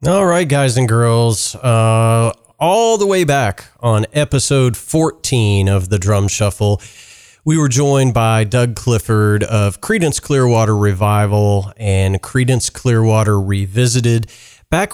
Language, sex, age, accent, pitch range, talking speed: English, male, 30-49, American, 105-130 Hz, 130 wpm